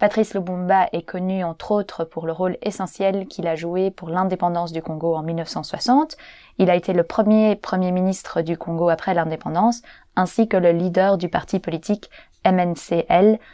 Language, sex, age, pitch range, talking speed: English, female, 20-39, 170-205 Hz, 170 wpm